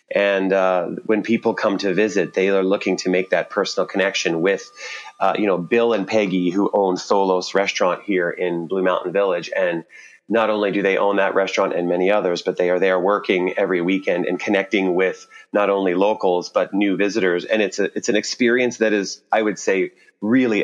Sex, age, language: male, 30-49, English